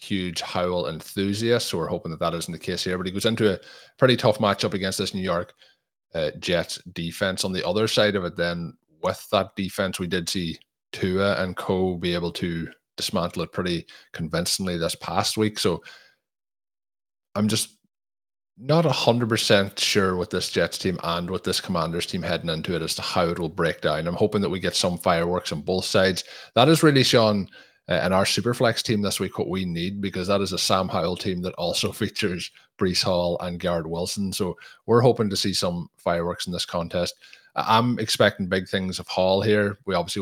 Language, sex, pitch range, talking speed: English, male, 90-105 Hz, 205 wpm